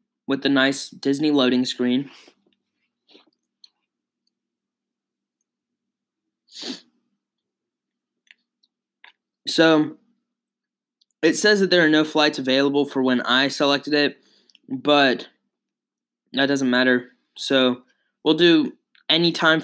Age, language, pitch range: 20-39, English, 130-165 Hz